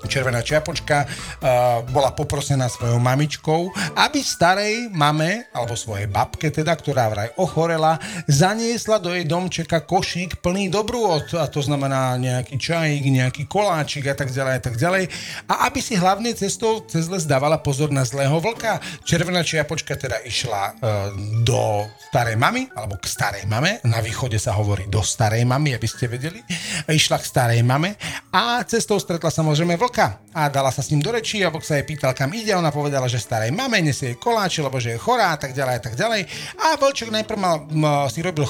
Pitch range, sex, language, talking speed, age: 130-185 Hz, male, Slovak, 180 wpm, 40-59